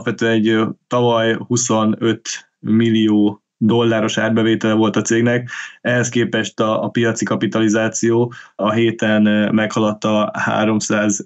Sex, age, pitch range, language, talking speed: male, 20-39, 110-120 Hz, Hungarian, 105 wpm